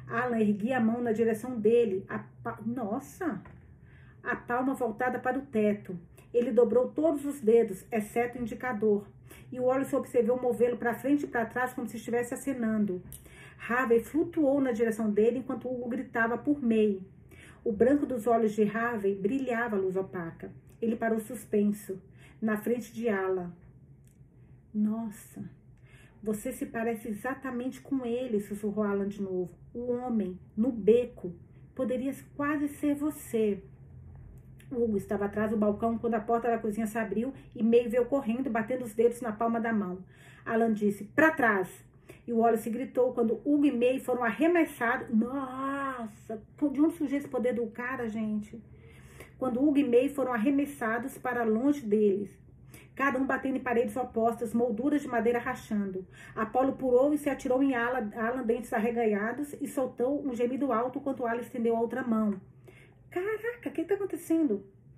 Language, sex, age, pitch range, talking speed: Portuguese, female, 40-59, 215-255 Hz, 165 wpm